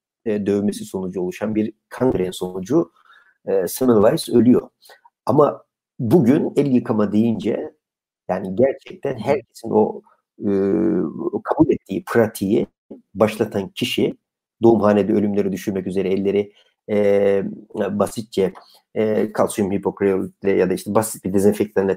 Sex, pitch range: male, 105-135 Hz